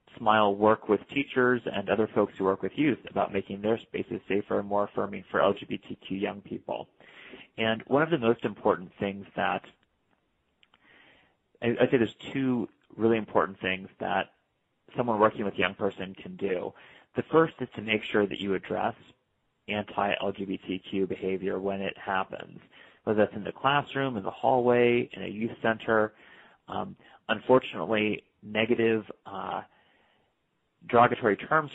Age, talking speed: 30-49, 150 wpm